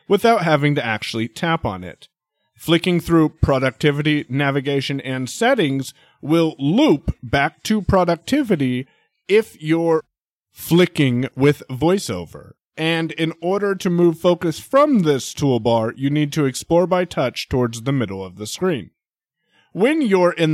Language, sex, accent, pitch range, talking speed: English, male, American, 125-175 Hz, 135 wpm